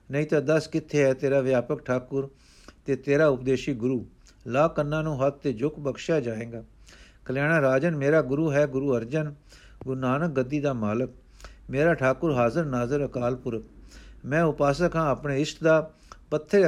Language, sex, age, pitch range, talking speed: Punjabi, male, 60-79, 130-160 Hz, 160 wpm